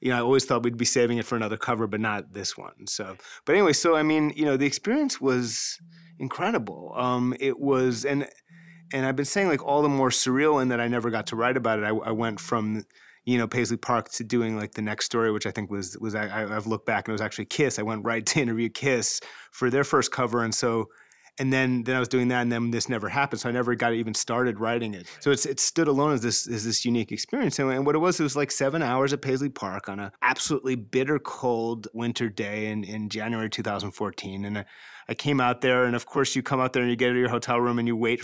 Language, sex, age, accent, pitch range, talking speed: English, male, 30-49, American, 110-135 Hz, 260 wpm